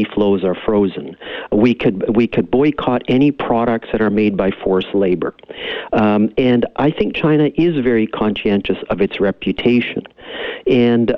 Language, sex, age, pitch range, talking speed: English, male, 50-69, 105-125 Hz, 150 wpm